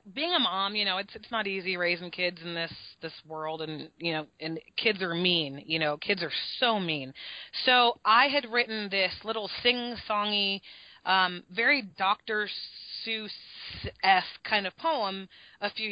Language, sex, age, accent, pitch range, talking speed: English, female, 30-49, American, 180-220 Hz, 165 wpm